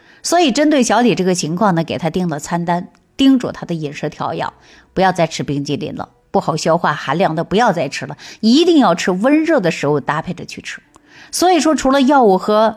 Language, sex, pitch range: Chinese, female, 165-220 Hz